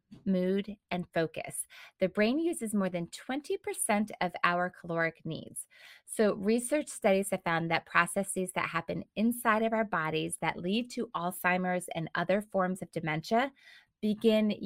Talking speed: 145 wpm